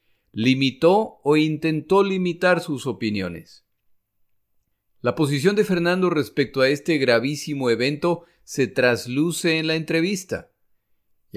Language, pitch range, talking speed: Spanish, 110-160 Hz, 110 wpm